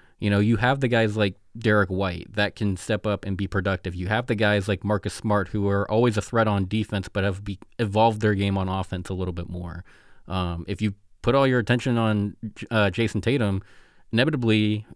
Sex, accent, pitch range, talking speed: male, American, 95-110 Hz, 215 wpm